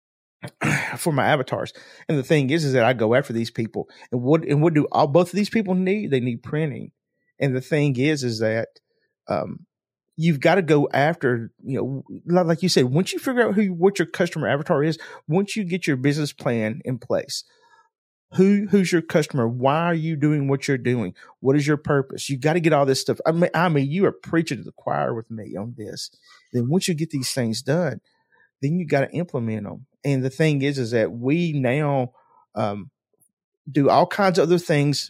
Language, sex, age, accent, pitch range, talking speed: English, male, 40-59, American, 125-165 Hz, 220 wpm